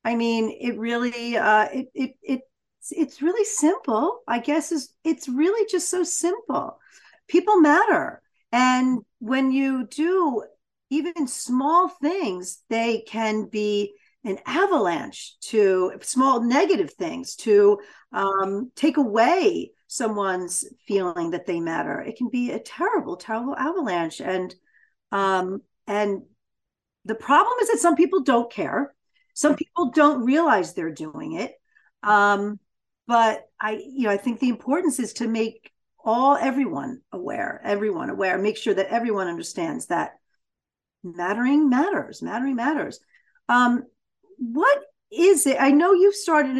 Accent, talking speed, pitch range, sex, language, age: American, 135 wpm, 215-305 Hz, female, English, 50-69